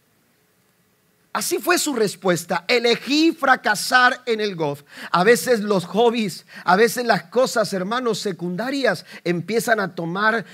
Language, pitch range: Spanish, 180-230 Hz